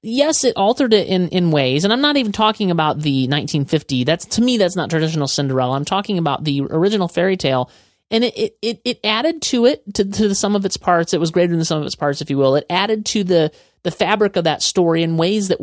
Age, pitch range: 30-49, 160-220 Hz